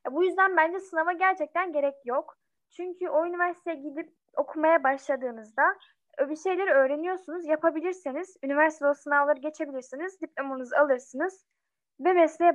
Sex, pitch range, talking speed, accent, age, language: female, 265-330 Hz, 120 wpm, native, 10-29, Turkish